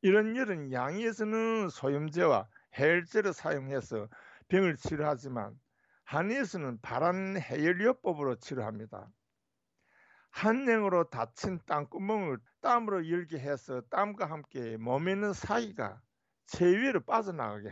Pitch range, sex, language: 125-195 Hz, male, Korean